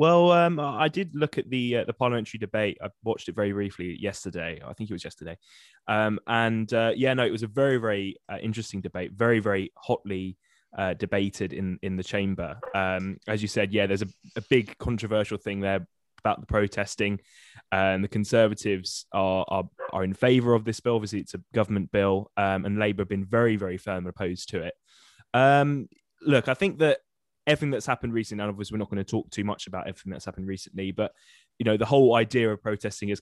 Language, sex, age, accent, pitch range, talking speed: English, male, 10-29, British, 95-115 Hz, 215 wpm